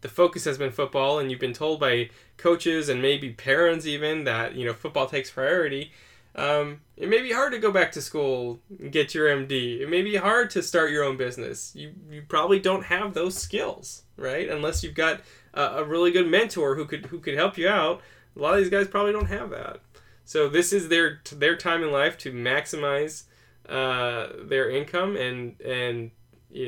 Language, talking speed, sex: English, 205 wpm, male